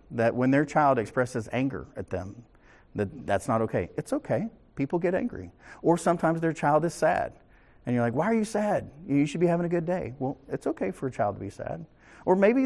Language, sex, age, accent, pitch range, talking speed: English, male, 50-69, American, 115-155 Hz, 230 wpm